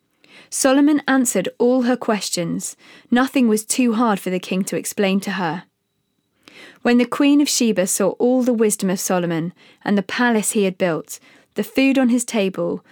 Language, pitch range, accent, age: English, 190-240 Hz, British, 20-39